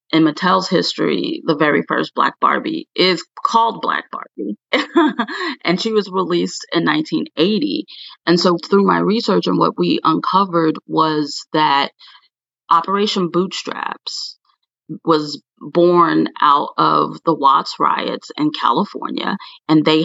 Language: English